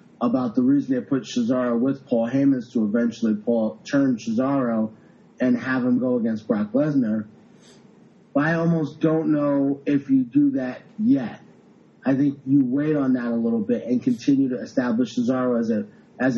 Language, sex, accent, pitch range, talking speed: English, male, American, 135-220 Hz, 175 wpm